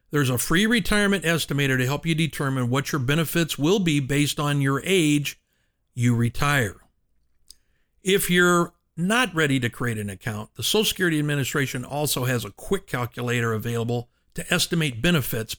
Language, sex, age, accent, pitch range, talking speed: English, male, 50-69, American, 120-165 Hz, 160 wpm